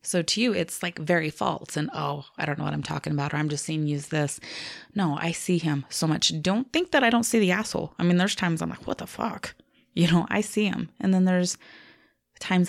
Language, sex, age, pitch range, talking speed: English, female, 20-39, 155-185 Hz, 260 wpm